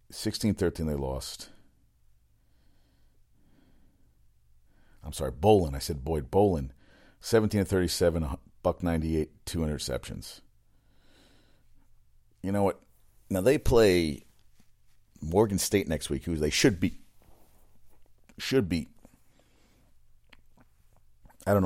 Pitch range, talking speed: 70-100 Hz, 90 wpm